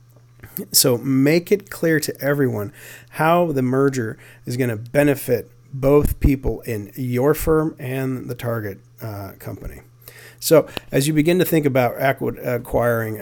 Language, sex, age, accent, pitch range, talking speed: English, male, 40-59, American, 115-145 Hz, 140 wpm